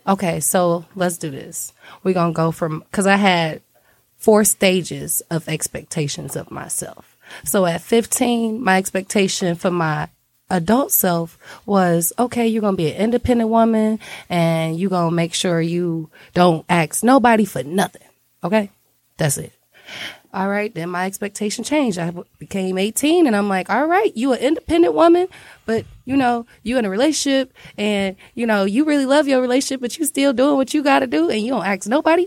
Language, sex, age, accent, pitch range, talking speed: English, female, 20-39, American, 175-250 Hz, 185 wpm